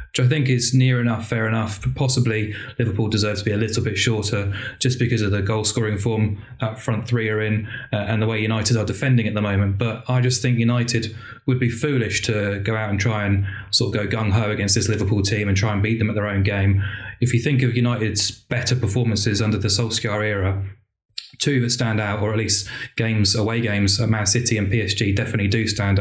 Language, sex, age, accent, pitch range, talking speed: English, male, 20-39, British, 105-120 Hz, 225 wpm